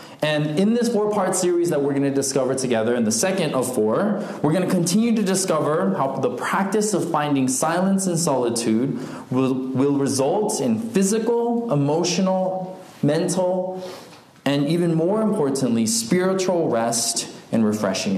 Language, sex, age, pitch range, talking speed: English, male, 20-39, 130-185 Hz, 150 wpm